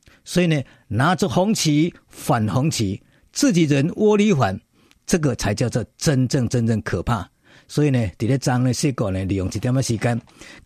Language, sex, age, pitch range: Chinese, male, 50-69, 110-155 Hz